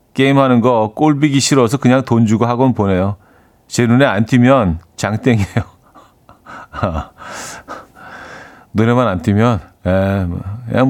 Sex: male